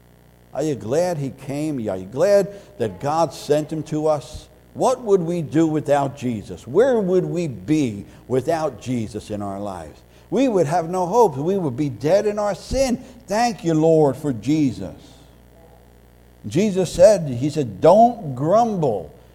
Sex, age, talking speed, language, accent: male, 60-79, 160 wpm, English, American